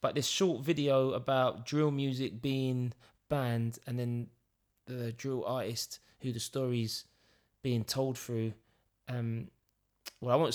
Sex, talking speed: male, 135 wpm